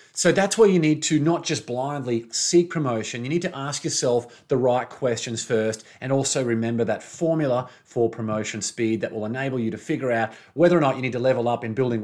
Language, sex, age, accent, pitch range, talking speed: English, male, 30-49, Australian, 115-160 Hz, 225 wpm